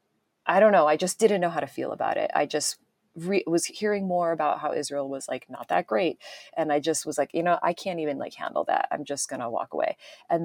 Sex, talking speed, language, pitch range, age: female, 260 wpm, English, 145-170 Hz, 30-49